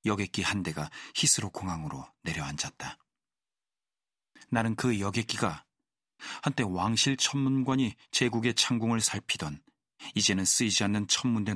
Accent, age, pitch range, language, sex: native, 40-59, 105-125 Hz, Korean, male